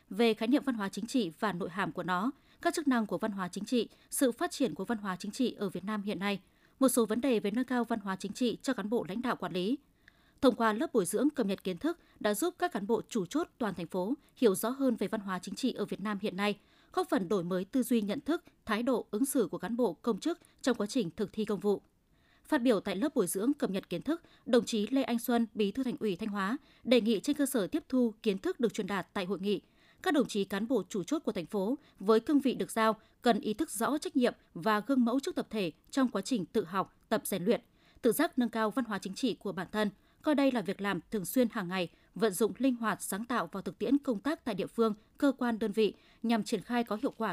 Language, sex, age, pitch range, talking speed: Vietnamese, female, 20-39, 200-255 Hz, 280 wpm